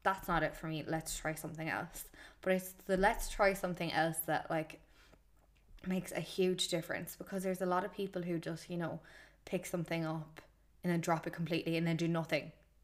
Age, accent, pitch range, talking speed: 10-29, Irish, 160-180 Hz, 205 wpm